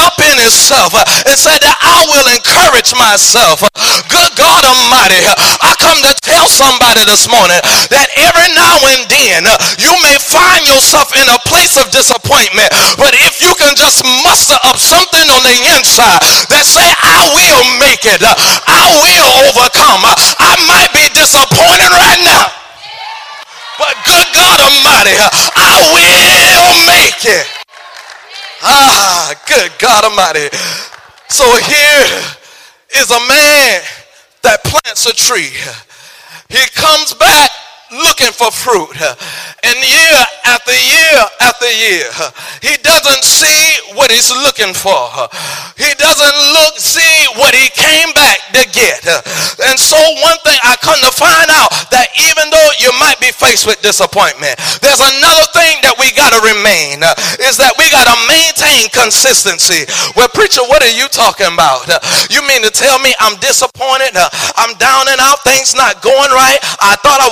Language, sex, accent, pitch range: English, male, American, 250-315 Hz